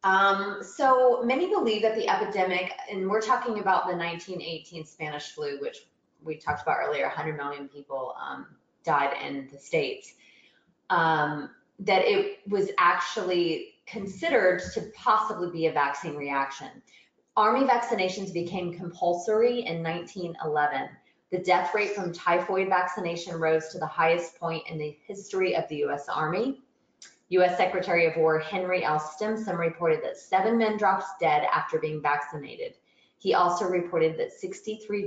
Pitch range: 160-210 Hz